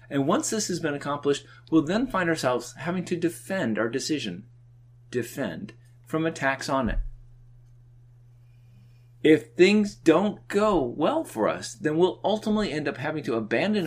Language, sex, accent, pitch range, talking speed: English, male, American, 120-165 Hz, 150 wpm